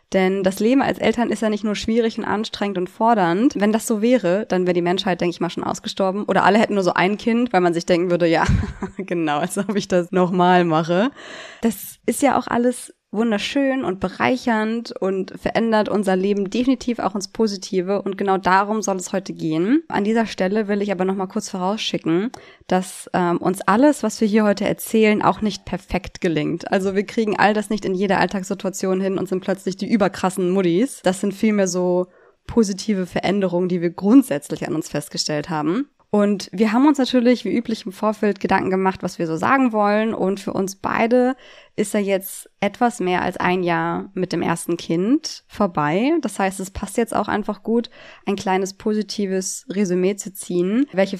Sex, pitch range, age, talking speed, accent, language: female, 180-220 Hz, 20-39, 200 wpm, German, German